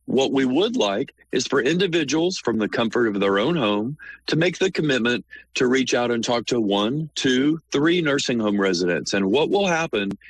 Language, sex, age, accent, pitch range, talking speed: English, male, 40-59, American, 100-130 Hz, 200 wpm